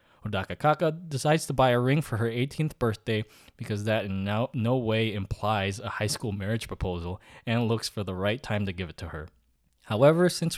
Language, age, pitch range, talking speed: English, 20-39, 100-135 Hz, 205 wpm